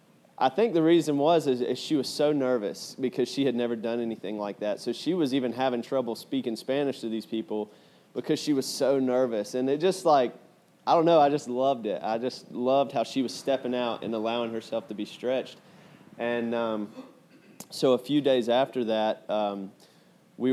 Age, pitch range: 20-39, 110-130 Hz